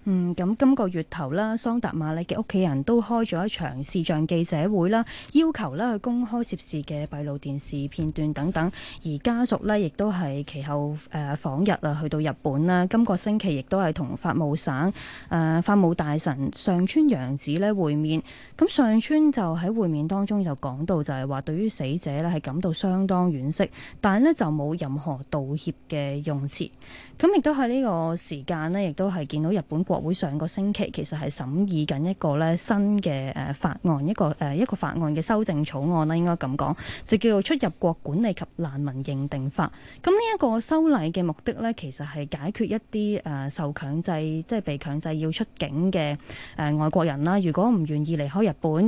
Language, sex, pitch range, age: Chinese, female, 150-205 Hz, 20-39